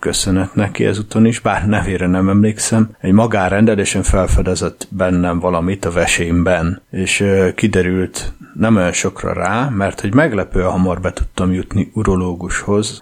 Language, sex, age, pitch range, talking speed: Hungarian, male, 30-49, 90-105 Hz, 135 wpm